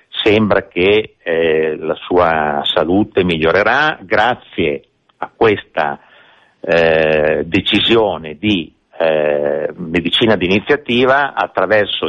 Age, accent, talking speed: 50-69, native, 85 wpm